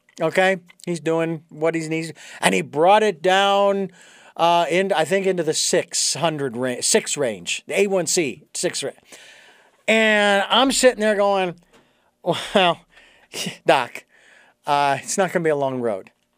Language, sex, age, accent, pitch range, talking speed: English, male, 40-59, American, 170-225 Hz, 155 wpm